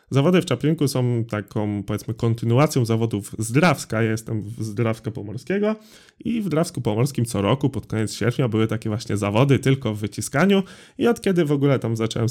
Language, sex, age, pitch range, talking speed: Polish, male, 20-39, 110-150 Hz, 180 wpm